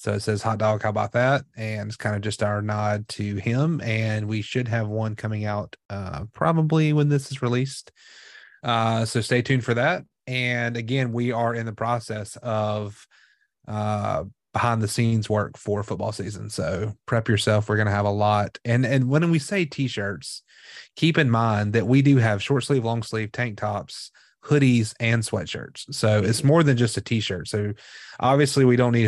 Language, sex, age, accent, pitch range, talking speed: English, male, 30-49, American, 105-120 Hz, 195 wpm